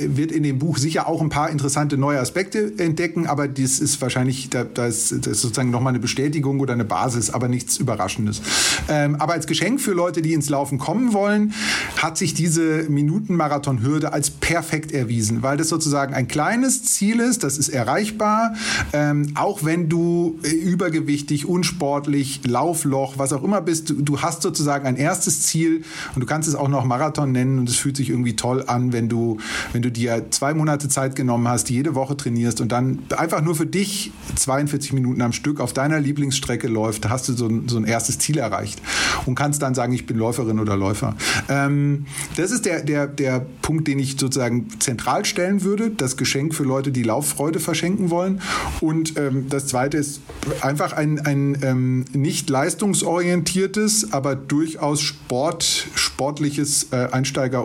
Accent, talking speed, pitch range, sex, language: German, 180 wpm, 125-160 Hz, male, German